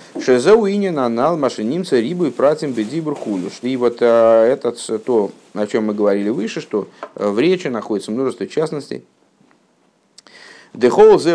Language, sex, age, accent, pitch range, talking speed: Russian, male, 50-69, native, 115-170 Hz, 145 wpm